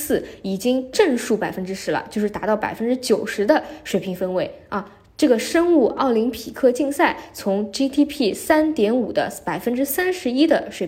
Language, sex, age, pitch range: Chinese, female, 10-29, 185-245 Hz